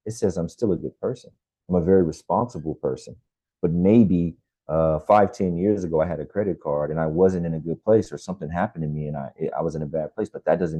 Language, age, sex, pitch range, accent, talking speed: English, 30-49, male, 80-95 Hz, American, 260 wpm